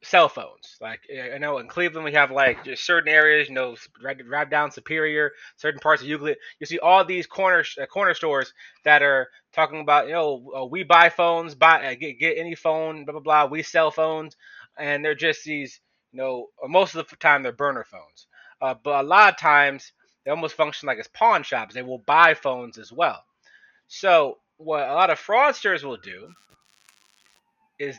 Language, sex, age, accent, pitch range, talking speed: English, male, 20-39, American, 135-165 Hz, 200 wpm